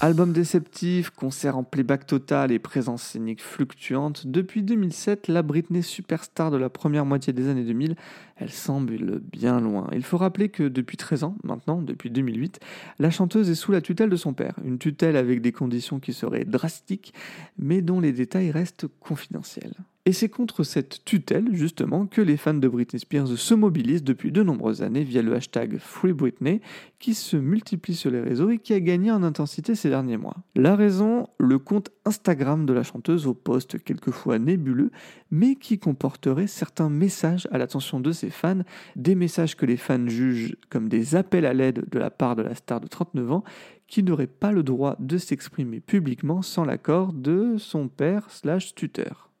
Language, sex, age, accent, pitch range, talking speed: French, male, 30-49, French, 135-190 Hz, 185 wpm